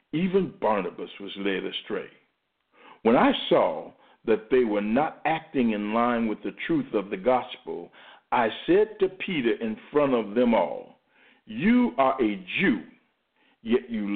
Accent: American